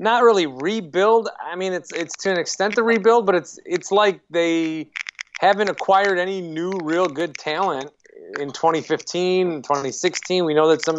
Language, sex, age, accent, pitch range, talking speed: English, male, 30-49, American, 140-170 Hz, 170 wpm